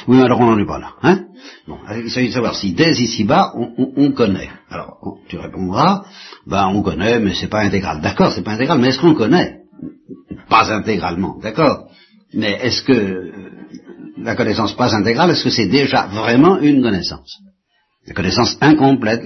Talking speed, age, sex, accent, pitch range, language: 175 wpm, 60-79, male, French, 100-160 Hz, French